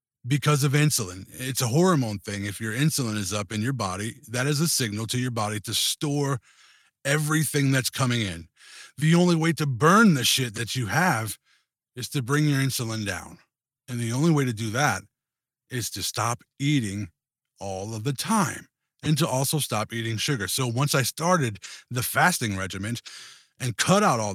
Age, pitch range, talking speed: 30-49, 110-150 Hz, 185 wpm